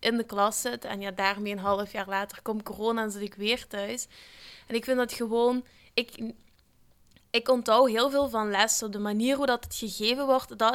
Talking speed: 210 wpm